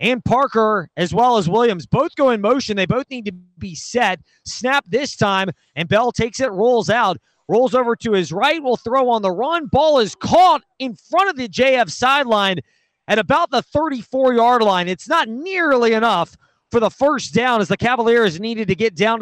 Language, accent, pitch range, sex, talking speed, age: English, American, 205-265 Hz, male, 200 wpm, 30-49